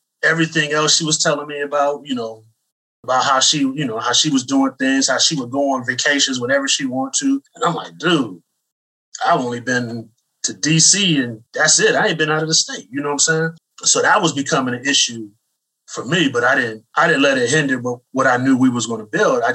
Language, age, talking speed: English, 30-49, 235 wpm